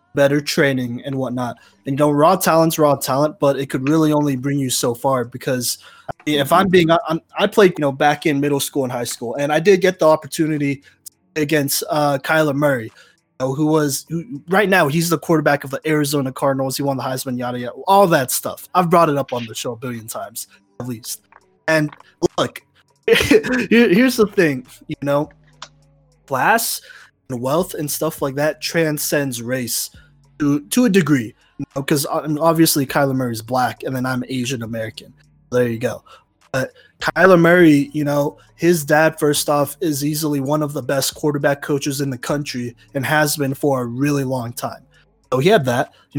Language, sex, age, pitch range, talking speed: English, male, 20-39, 130-155 Hz, 195 wpm